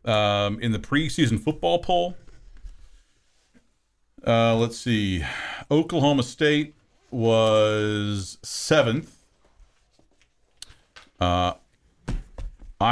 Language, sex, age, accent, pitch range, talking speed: English, male, 50-69, American, 90-125 Hz, 65 wpm